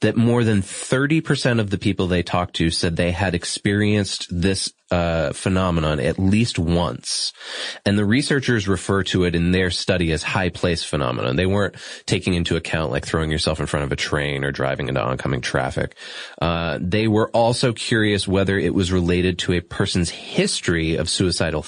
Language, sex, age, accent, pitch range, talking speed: English, male, 30-49, American, 85-115 Hz, 180 wpm